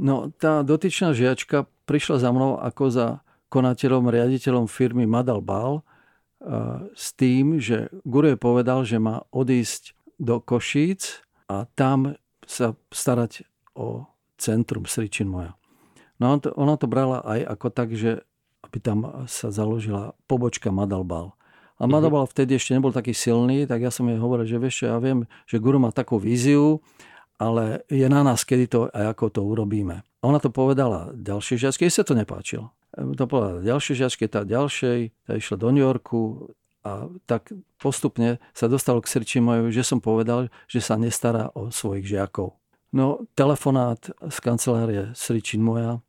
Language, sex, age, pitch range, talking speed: Czech, male, 50-69, 115-135 Hz, 160 wpm